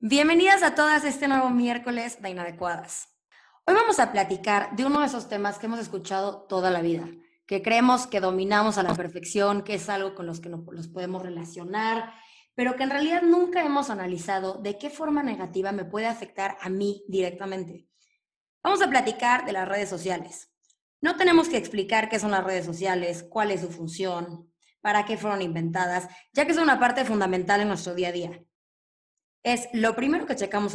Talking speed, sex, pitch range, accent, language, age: 190 wpm, female, 190-265 Hz, Mexican, Spanish, 20-39